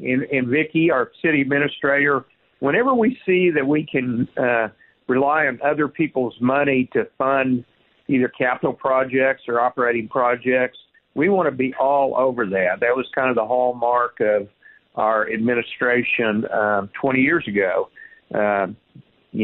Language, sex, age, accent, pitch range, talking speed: English, male, 50-69, American, 115-140 Hz, 140 wpm